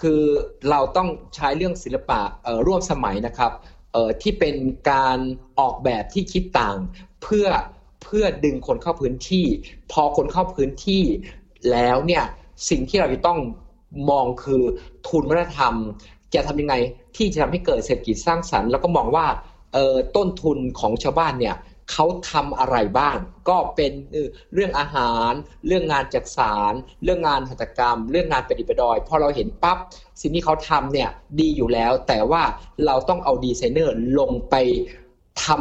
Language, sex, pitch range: Thai, male, 125-175 Hz